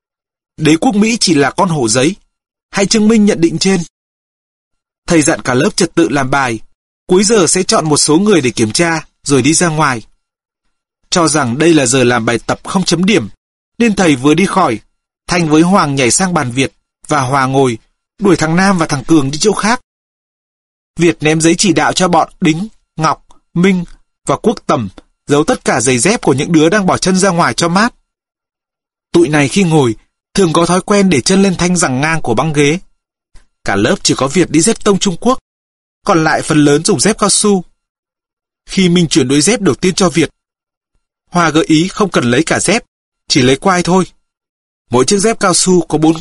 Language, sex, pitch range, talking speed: Vietnamese, male, 150-195 Hz, 210 wpm